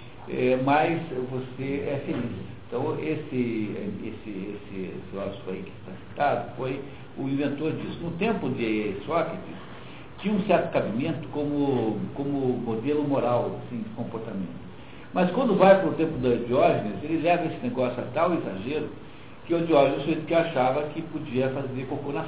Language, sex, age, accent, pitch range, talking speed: Portuguese, male, 60-79, Brazilian, 120-155 Hz, 165 wpm